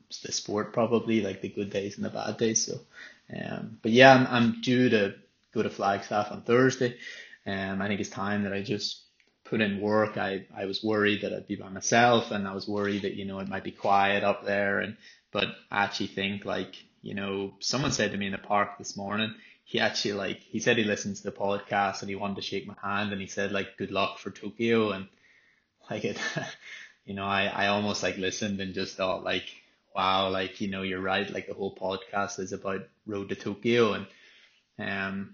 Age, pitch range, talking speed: 20-39, 100-105 Hz, 220 wpm